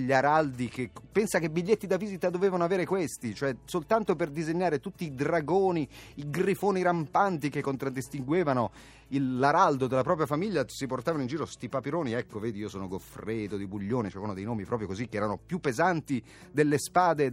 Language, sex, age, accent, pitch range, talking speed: Italian, male, 30-49, native, 100-155 Hz, 180 wpm